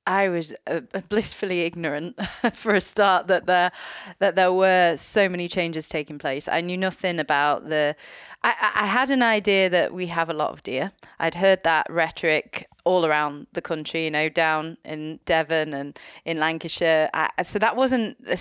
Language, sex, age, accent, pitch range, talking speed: English, female, 30-49, British, 165-200 Hz, 180 wpm